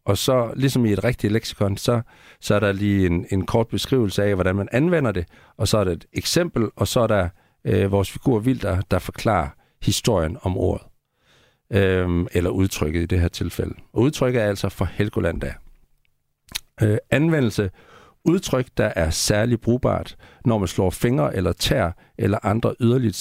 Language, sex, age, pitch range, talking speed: Danish, male, 60-79, 95-130 Hz, 180 wpm